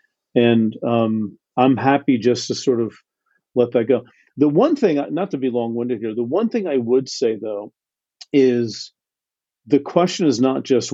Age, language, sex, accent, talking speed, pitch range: 50-69, English, male, American, 175 wpm, 115-135 Hz